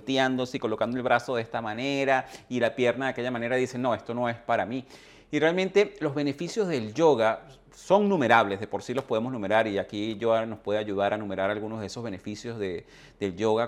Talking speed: 220 wpm